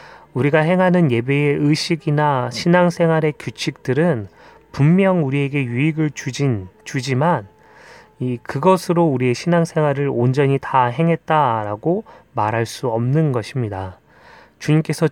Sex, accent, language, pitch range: male, native, Korean, 120-155 Hz